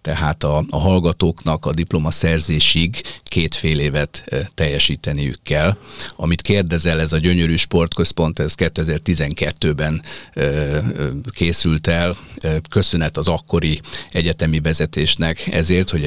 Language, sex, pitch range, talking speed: Hungarian, male, 80-90 Hz, 120 wpm